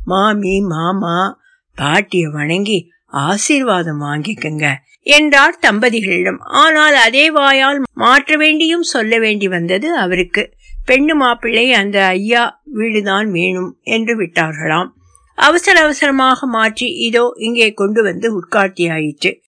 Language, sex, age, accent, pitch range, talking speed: Tamil, female, 60-79, native, 190-270 Hz, 100 wpm